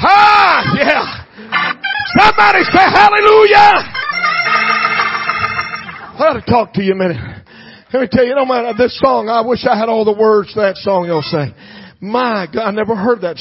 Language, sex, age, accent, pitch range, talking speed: English, male, 40-59, American, 140-195 Hz, 180 wpm